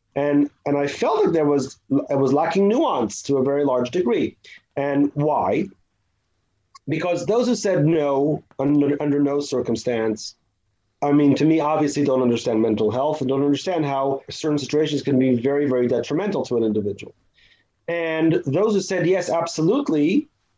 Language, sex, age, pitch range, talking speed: English, male, 30-49, 130-165 Hz, 165 wpm